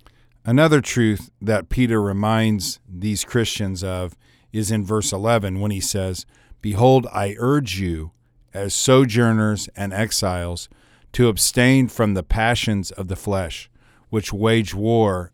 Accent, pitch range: American, 95-115 Hz